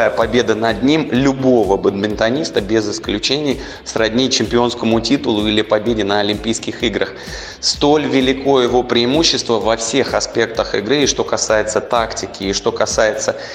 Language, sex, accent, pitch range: Russian, male, native, 110-130 Hz